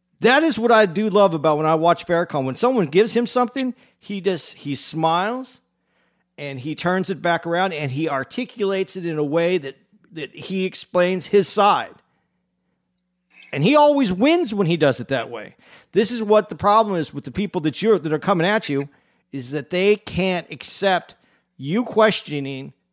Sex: male